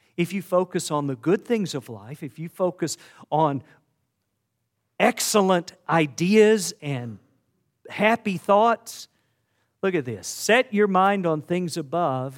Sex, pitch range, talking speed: male, 130-195 Hz, 130 wpm